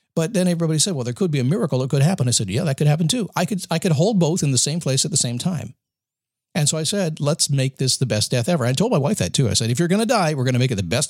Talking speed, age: 345 wpm, 50-69